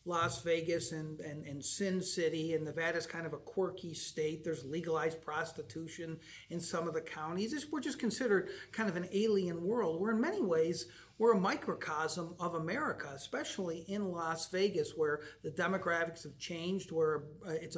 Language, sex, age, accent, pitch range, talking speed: English, male, 50-69, American, 160-195 Hz, 170 wpm